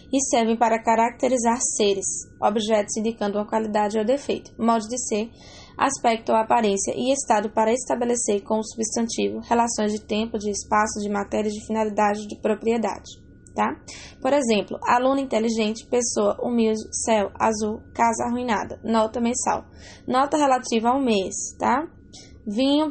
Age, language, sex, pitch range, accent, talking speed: 10-29, English, female, 215-250 Hz, Brazilian, 140 wpm